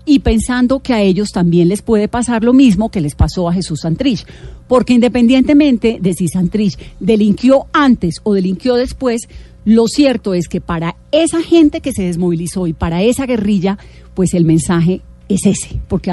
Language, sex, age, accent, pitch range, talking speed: Spanish, female, 40-59, Colombian, 180-245 Hz, 175 wpm